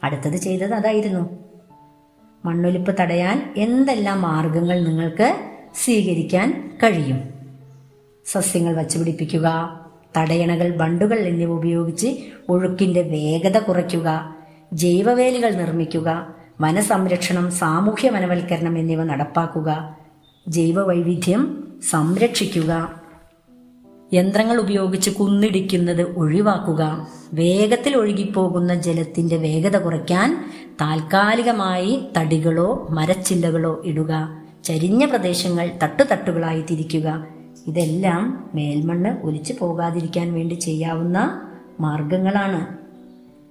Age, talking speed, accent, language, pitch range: 20-39, 70 wpm, native, Malayalam, 160-200 Hz